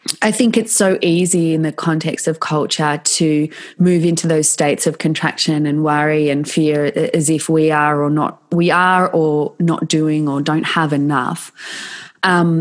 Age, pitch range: 20-39, 150-170 Hz